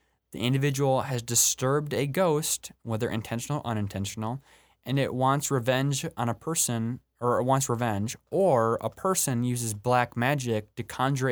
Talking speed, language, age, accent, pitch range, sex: 155 wpm, English, 20-39, American, 105-130 Hz, male